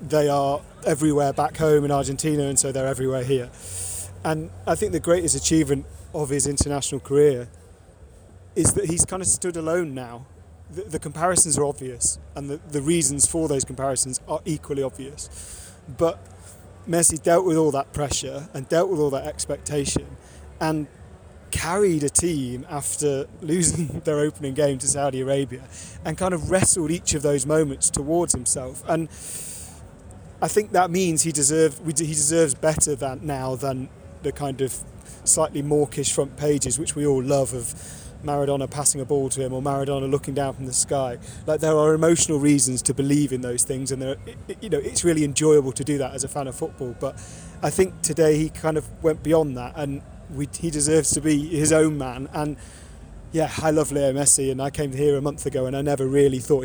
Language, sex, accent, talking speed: English, male, British, 190 wpm